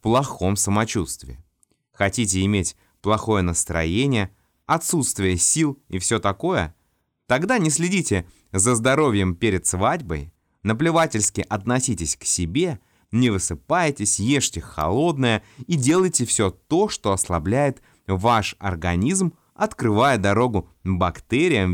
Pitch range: 90-125 Hz